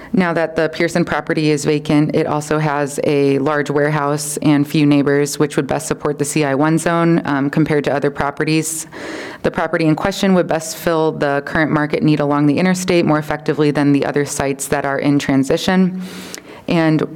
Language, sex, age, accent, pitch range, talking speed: English, female, 20-39, American, 145-160 Hz, 185 wpm